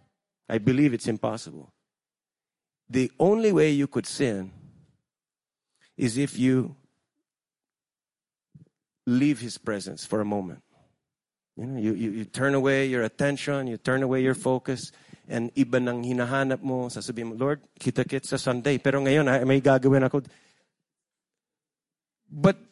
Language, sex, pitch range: English, male, 115-155 Hz